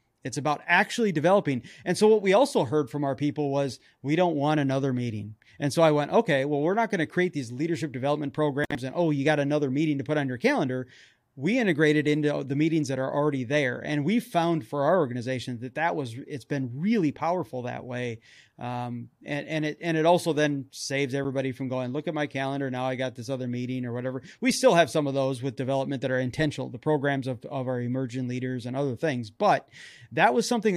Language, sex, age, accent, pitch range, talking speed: English, male, 30-49, American, 130-165 Hz, 230 wpm